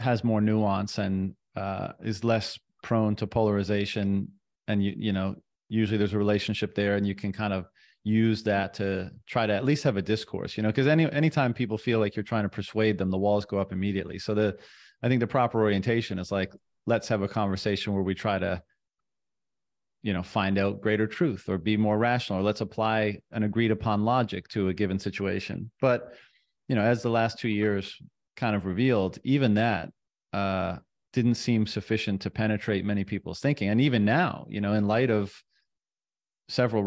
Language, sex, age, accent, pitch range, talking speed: English, male, 30-49, American, 100-115 Hz, 195 wpm